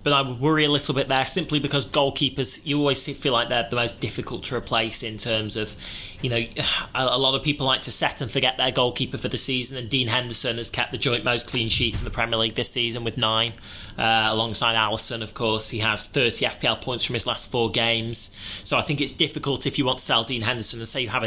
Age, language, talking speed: 20-39, English, 250 wpm